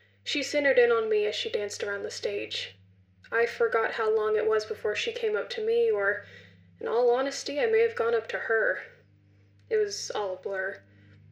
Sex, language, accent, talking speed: female, English, American, 205 wpm